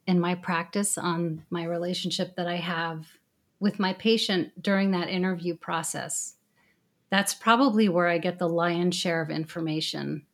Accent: American